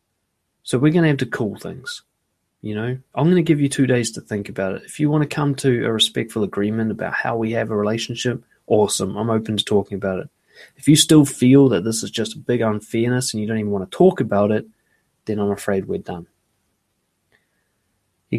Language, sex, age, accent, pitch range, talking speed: English, male, 20-39, Australian, 105-135 Hz, 225 wpm